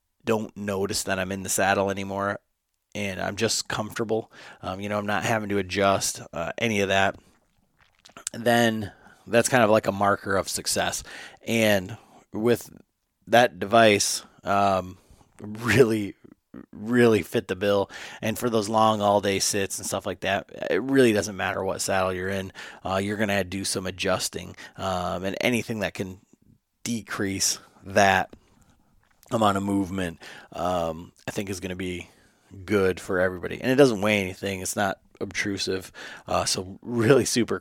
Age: 30-49